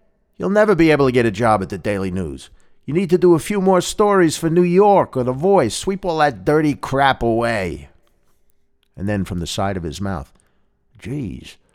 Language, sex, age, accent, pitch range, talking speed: English, male, 50-69, American, 90-145 Hz, 210 wpm